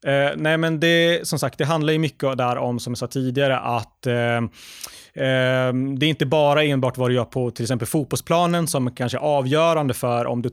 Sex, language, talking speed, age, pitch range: male, Swedish, 215 wpm, 30-49, 120-145 Hz